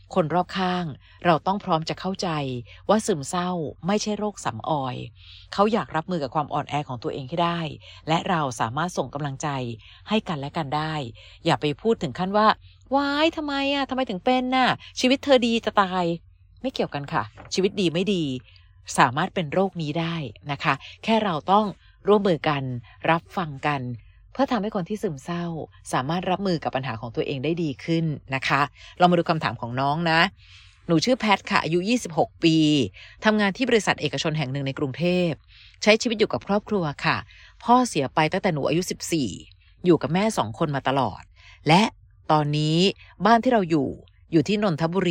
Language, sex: Thai, female